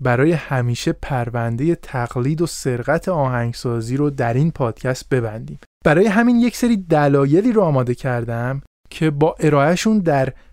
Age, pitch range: 20-39, 135-195 Hz